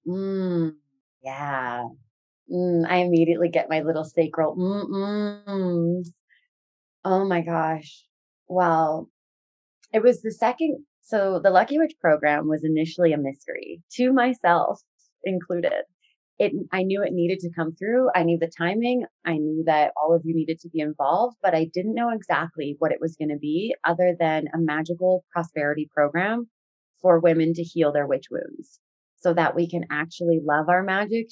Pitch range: 160-185 Hz